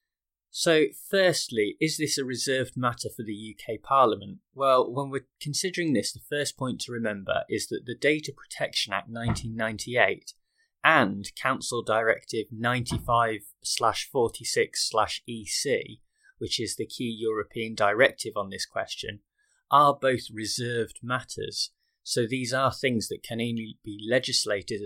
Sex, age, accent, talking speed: male, 20-39, British, 130 wpm